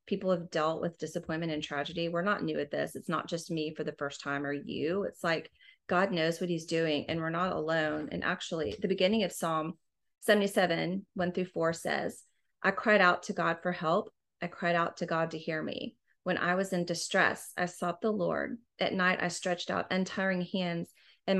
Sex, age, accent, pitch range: female, 30-49, American, 165-190 Hz